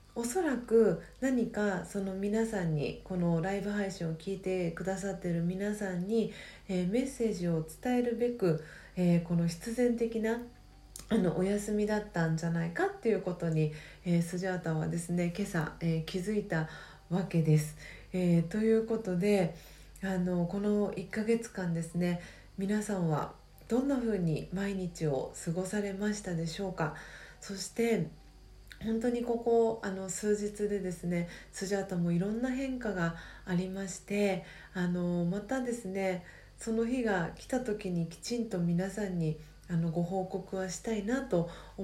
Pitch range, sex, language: 175-220 Hz, female, Japanese